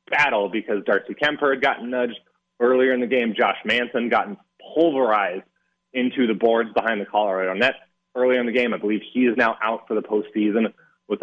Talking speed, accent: 190 wpm, American